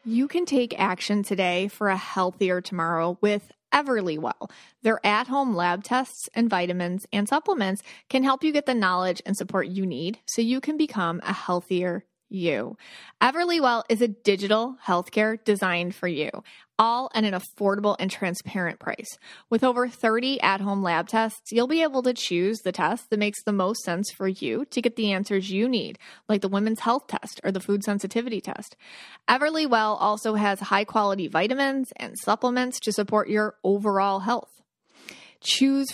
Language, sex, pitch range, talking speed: English, female, 190-245 Hz, 170 wpm